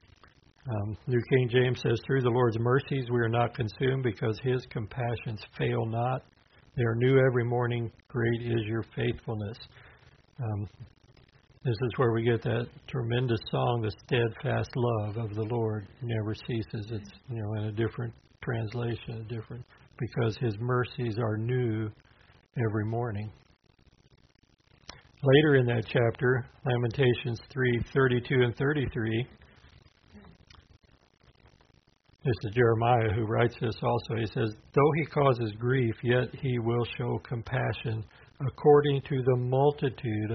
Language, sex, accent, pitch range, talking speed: English, male, American, 115-125 Hz, 140 wpm